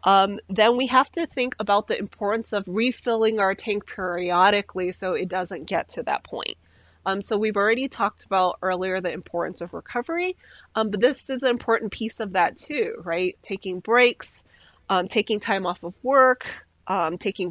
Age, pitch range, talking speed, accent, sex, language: 30-49, 190-250 Hz, 180 wpm, American, female, English